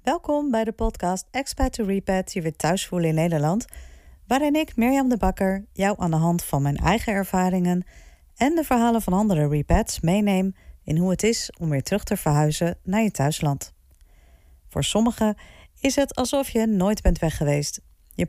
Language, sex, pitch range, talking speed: Dutch, female, 150-225 Hz, 185 wpm